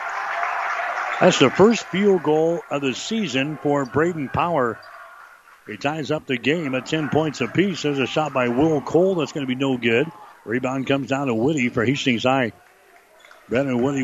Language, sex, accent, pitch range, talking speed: English, male, American, 125-150 Hz, 185 wpm